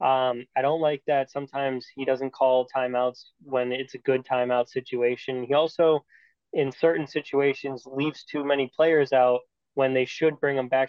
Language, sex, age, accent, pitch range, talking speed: English, male, 10-29, American, 130-145 Hz, 175 wpm